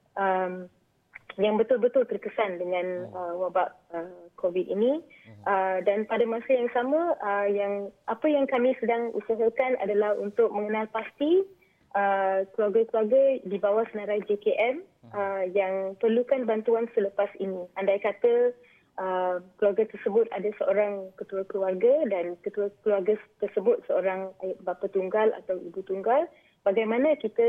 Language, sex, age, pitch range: Malay, female, 20-39, 190-230 Hz